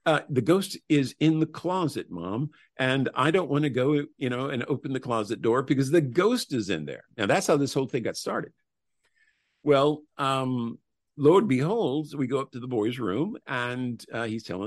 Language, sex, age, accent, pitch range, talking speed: English, male, 50-69, American, 105-140 Hz, 210 wpm